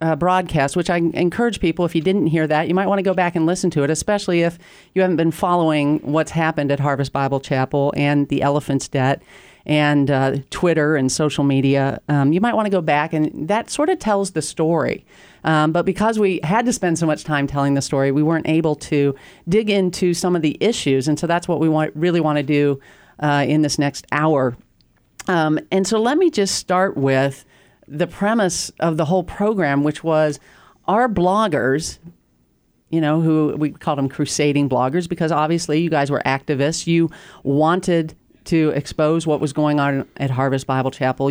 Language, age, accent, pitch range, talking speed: English, 40-59, American, 145-185 Hz, 200 wpm